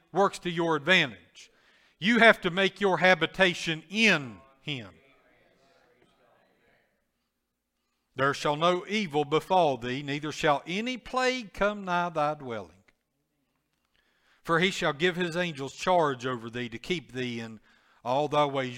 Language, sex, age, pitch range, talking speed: English, male, 60-79, 120-175 Hz, 135 wpm